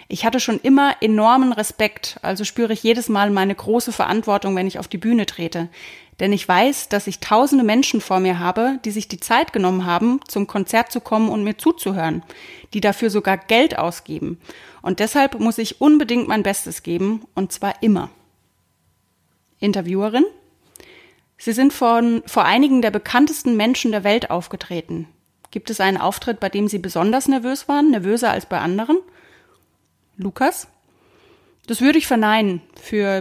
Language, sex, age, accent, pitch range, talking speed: German, female, 30-49, German, 190-245 Hz, 165 wpm